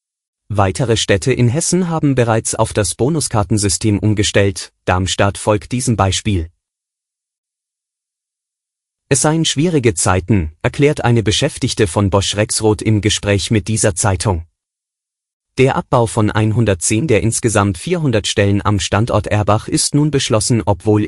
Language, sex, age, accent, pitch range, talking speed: German, male, 30-49, German, 100-120 Hz, 125 wpm